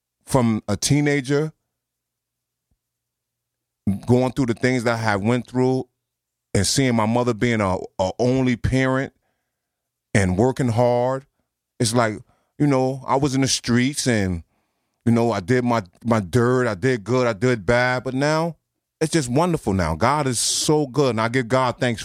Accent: American